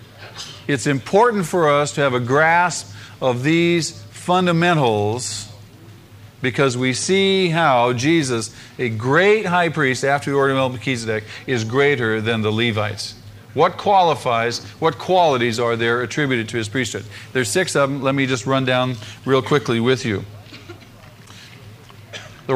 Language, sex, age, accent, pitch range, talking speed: English, male, 50-69, American, 110-150 Hz, 145 wpm